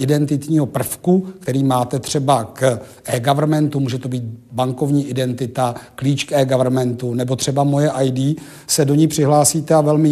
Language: Czech